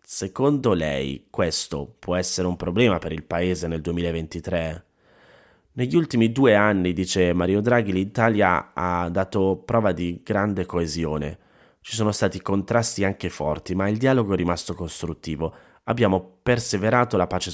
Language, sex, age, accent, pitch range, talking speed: Italian, male, 30-49, native, 85-105 Hz, 145 wpm